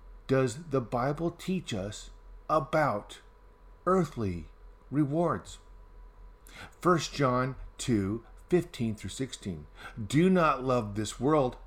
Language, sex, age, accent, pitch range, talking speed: English, male, 50-69, American, 100-155 Hz, 85 wpm